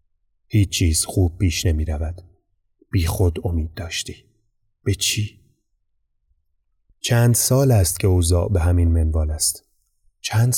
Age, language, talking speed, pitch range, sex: 30-49, Persian, 125 wpm, 85-110 Hz, male